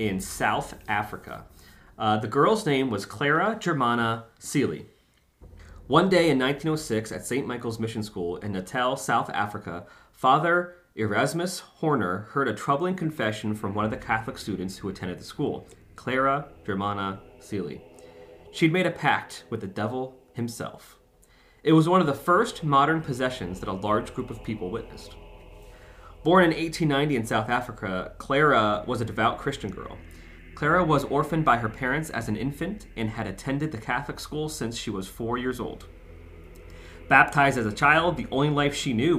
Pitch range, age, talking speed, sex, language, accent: 100-140 Hz, 30-49, 165 wpm, male, English, American